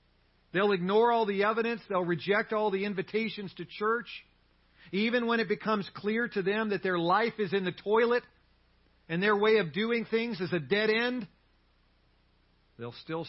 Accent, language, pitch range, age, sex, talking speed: American, English, 110-160 Hz, 50-69, male, 170 wpm